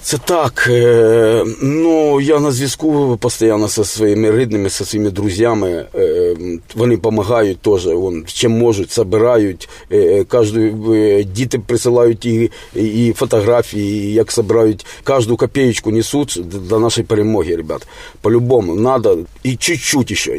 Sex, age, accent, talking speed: male, 40-59, native, 130 wpm